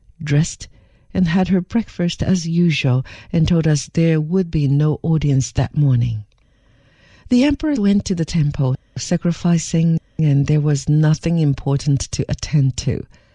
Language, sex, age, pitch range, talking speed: English, female, 60-79, 135-190 Hz, 145 wpm